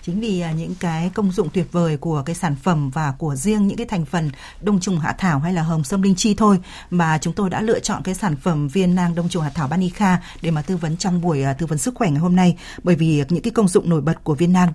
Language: Vietnamese